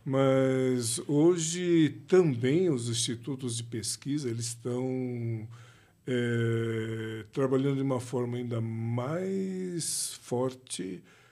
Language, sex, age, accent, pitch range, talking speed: Portuguese, male, 60-79, Brazilian, 120-145 Hz, 90 wpm